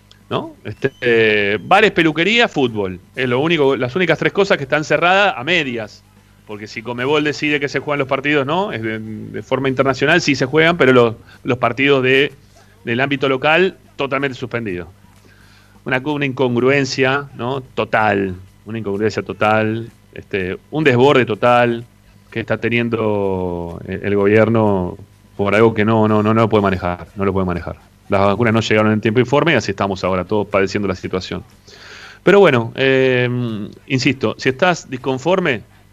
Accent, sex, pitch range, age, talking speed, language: Argentinian, male, 100-130 Hz, 30-49, 165 wpm, Spanish